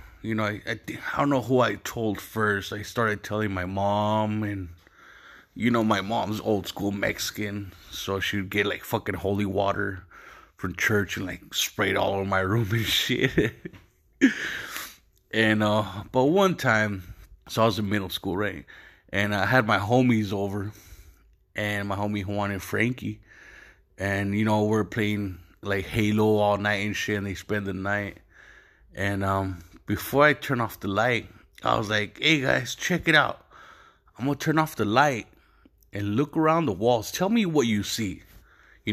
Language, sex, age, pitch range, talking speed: English, male, 30-49, 100-110 Hz, 180 wpm